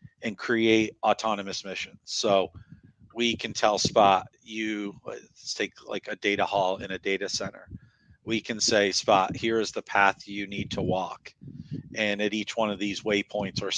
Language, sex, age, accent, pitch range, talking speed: English, male, 40-59, American, 95-110 Hz, 175 wpm